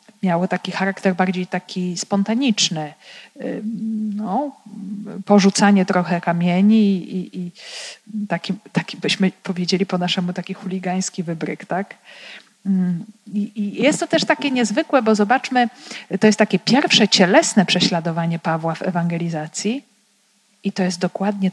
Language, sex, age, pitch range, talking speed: Polish, female, 40-59, 180-215 Hz, 125 wpm